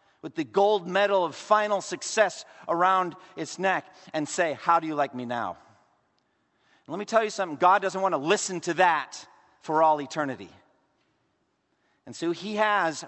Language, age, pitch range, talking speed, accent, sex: English, 50-69, 155-200 Hz, 175 wpm, American, male